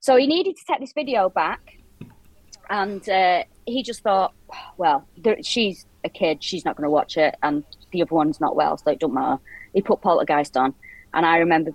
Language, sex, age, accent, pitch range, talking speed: English, female, 30-49, British, 165-255 Hz, 205 wpm